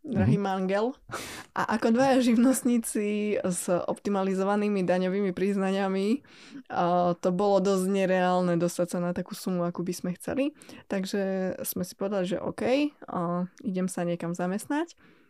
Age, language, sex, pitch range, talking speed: 20-39, Slovak, female, 180-220 Hz, 130 wpm